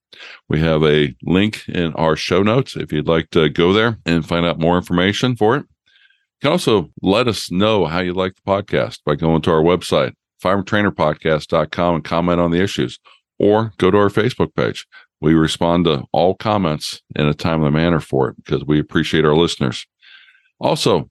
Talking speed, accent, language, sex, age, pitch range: 190 wpm, American, English, male, 50-69, 80-100 Hz